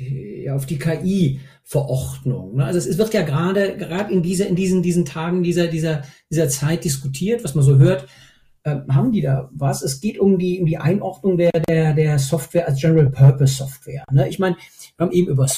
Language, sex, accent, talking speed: German, male, German, 210 wpm